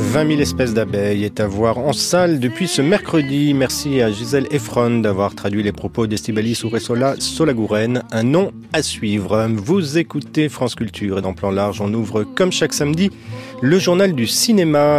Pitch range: 110-145 Hz